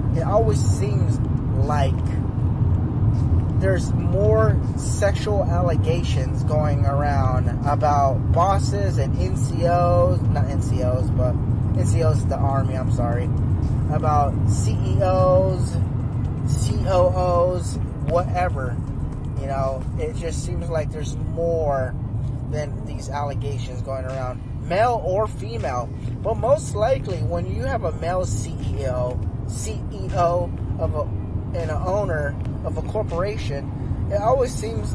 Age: 20-39